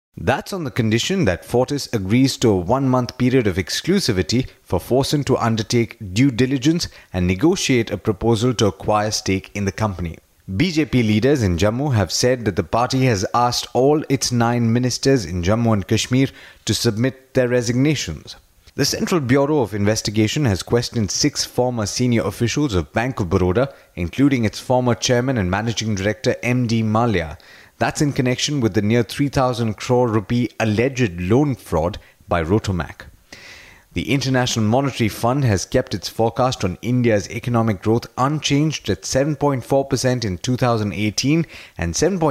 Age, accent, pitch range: 30-49, Indian, 105-130 Hz